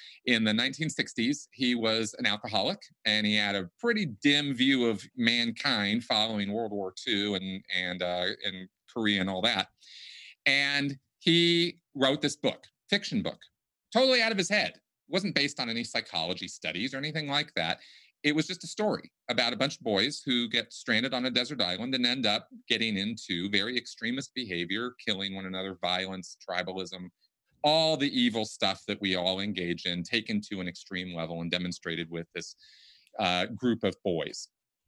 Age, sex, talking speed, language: 40-59, male, 175 wpm, English